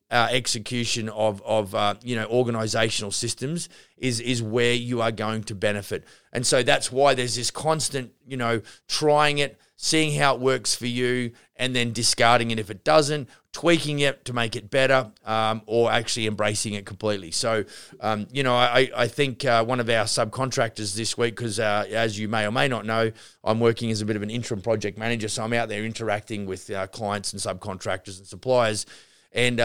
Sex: male